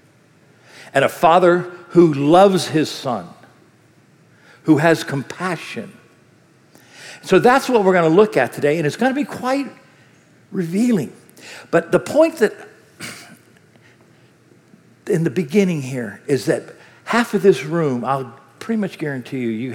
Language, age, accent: English, 60-79, American